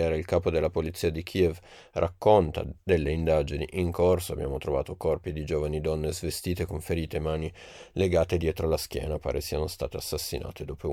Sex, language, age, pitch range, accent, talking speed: male, Italian, 30-49, 80-90 Hz, native, 175 wpm